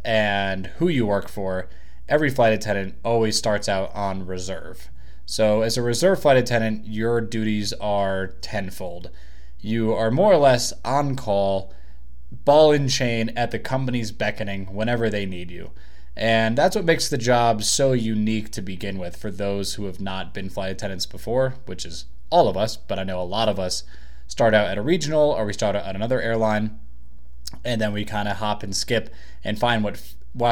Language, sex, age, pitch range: English, male, 20-39, 95-120 Hz